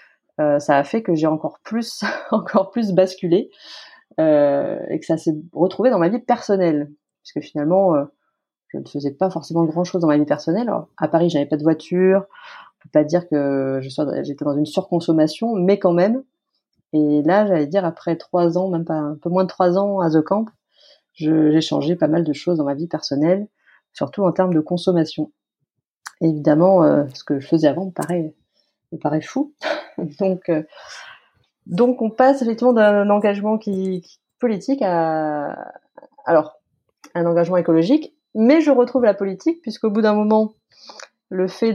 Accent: French